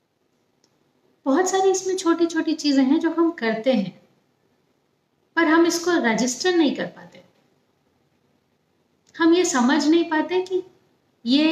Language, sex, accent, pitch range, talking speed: Hindi, female, native, 205-285 Hz, 130 wpm